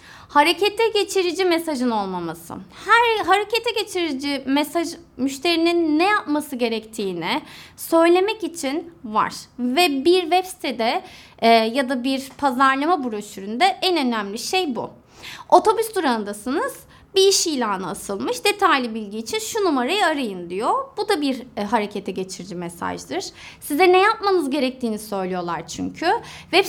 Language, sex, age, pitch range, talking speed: Turkish, female, 20-39, 250-370 Hz, 125 wpm